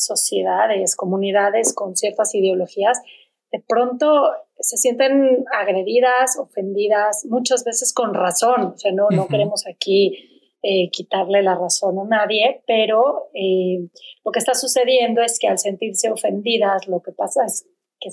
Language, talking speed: Spanish, 140 wpm